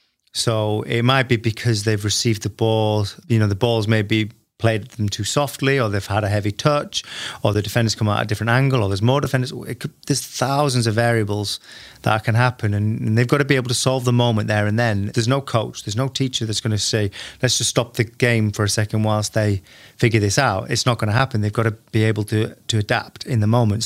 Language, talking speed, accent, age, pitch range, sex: English, 250 wpm, British, 30-49, 105-125 Hz, male